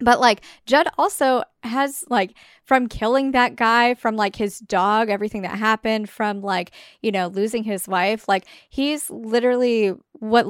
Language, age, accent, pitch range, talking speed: English, 10-29, American, 195-235 Hz, 160 wpm